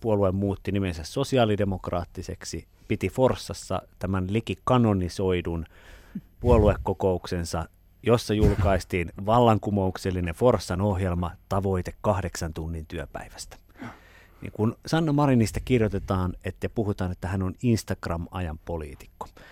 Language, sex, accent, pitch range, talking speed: Finnish, male, native, 90-115 Hz, 90 wpm